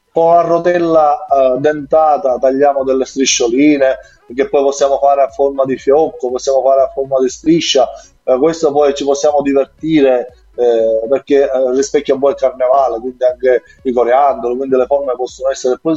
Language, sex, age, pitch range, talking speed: Italian, male, 30-49, 125-150 Hz, 170 wpm